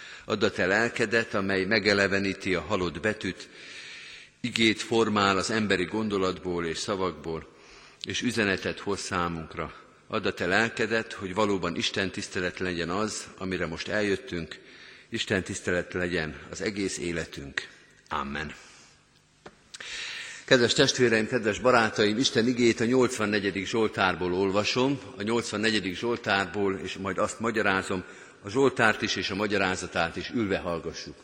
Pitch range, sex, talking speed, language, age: 95-120 Hz, male, 125 wpm, Hungarian, 50-69